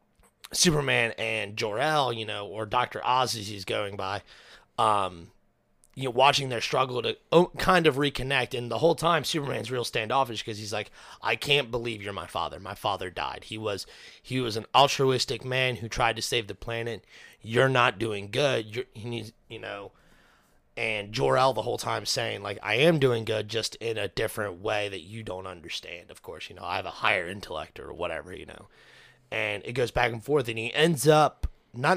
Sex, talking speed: male, 200 wpm